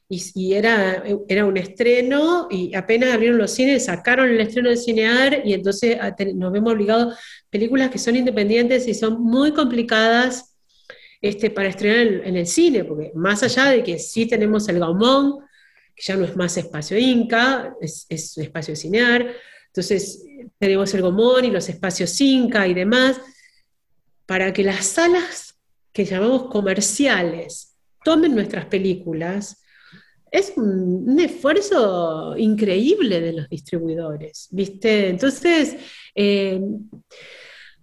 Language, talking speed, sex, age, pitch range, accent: Spanish, 135 wpm, female, 40-59, 195-265 Hz, Argentinian